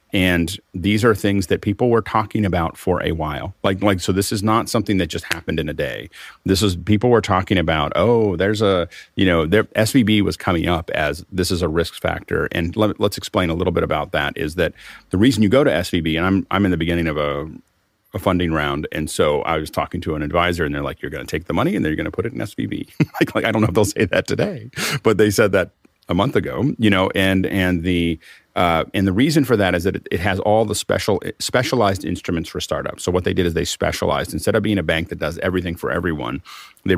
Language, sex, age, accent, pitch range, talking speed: English, male, 40-59, American, 85-105 Hz, 255 wpm